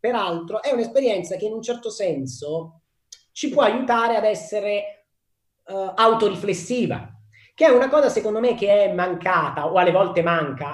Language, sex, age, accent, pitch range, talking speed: Italian, male, 30-49, native, 165-240 Hz, 150 wpm